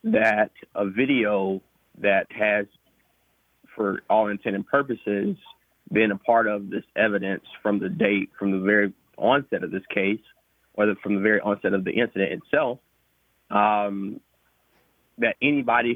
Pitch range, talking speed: 100-125 Hz, 140 wpm